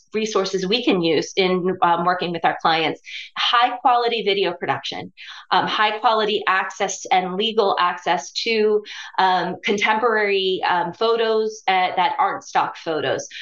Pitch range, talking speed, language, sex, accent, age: 185-215 Hz, 135 wpm, English, female, American, 30-49